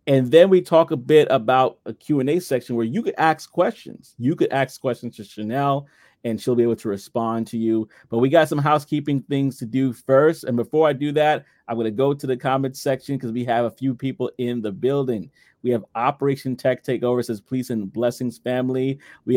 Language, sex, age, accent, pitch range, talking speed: English, male, 30-49, American, 115-140 Hz, 220 wpm